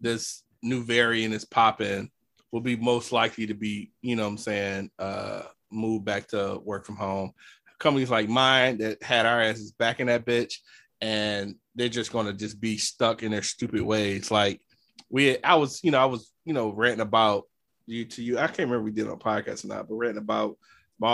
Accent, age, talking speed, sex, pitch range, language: American, 20-39, 210 wpm, male, 105-120 Hz, English